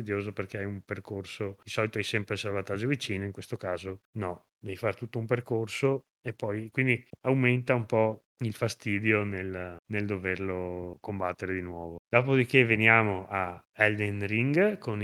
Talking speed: 160 wpm